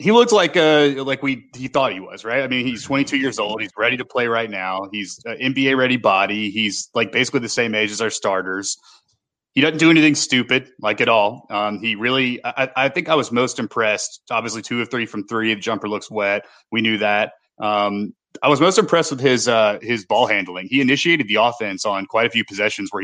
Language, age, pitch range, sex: English, 30-49, 105-130 Hz, male